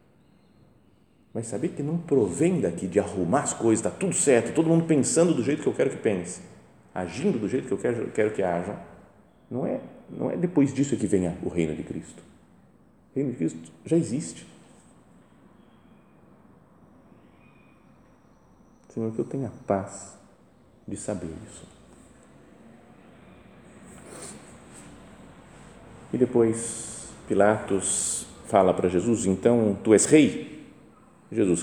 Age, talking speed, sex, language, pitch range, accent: 40-59, 130 wpm, male, Portuguese, 90-120 Hz, Brazilian